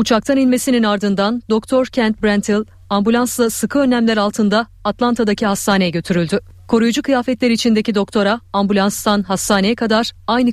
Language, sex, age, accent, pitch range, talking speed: Turkish, female, 40-59, native, 195-235 Hz, 120 wpm